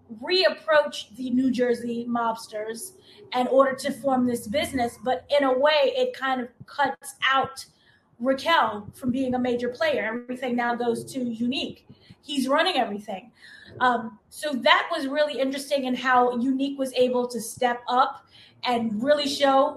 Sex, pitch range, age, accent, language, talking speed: female, 245-285 Hz, 20-39, American, English, 155 wpm